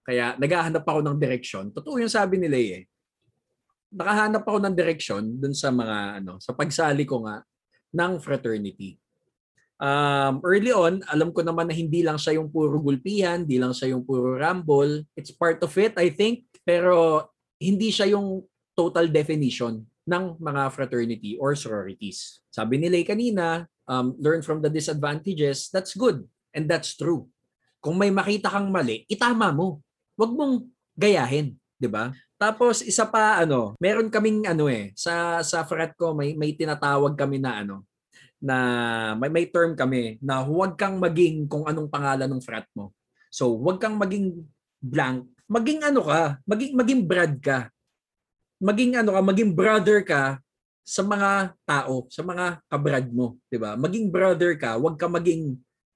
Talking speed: 165 wpm